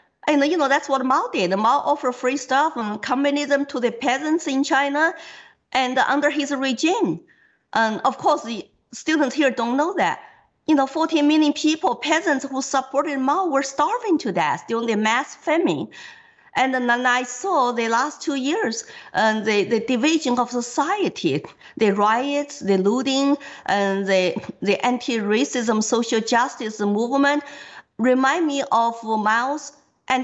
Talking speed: 155 wpm